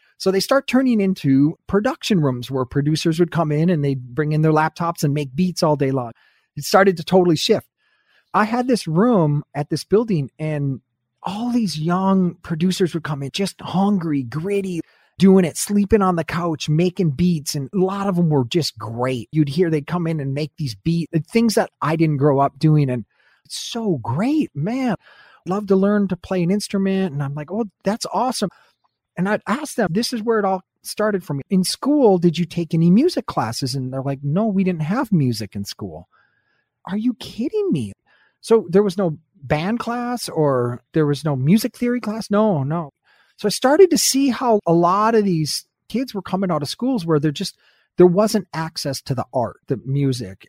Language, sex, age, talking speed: English, male, 30-49, 205 wpm